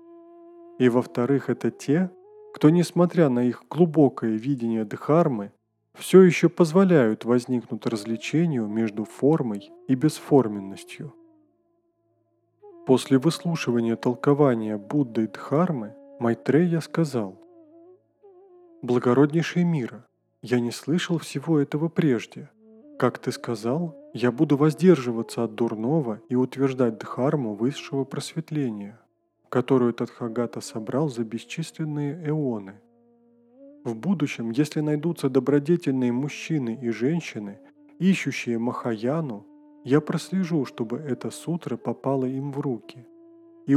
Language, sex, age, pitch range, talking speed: Russian, male, 20-39, 120-170 Hz, 105 wpm